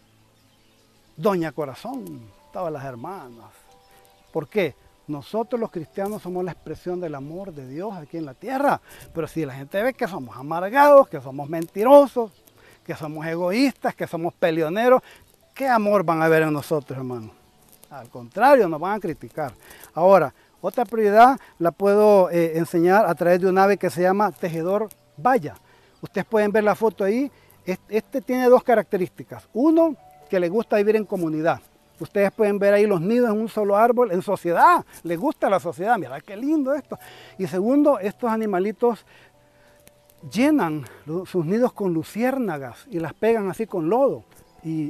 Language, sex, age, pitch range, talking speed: Spanish, male, 40-59, 155-215 Hz, 165 wpm